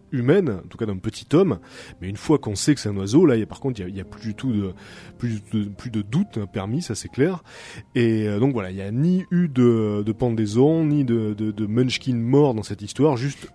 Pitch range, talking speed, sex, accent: 105-135 Hz, 270 wpm, male, French